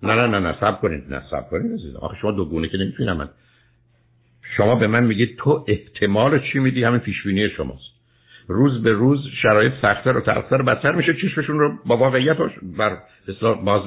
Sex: male